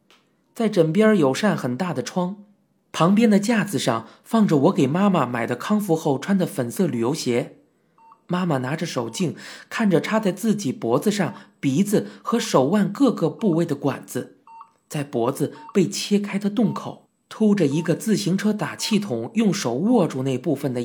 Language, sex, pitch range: Chinese, male, 140-215 Hz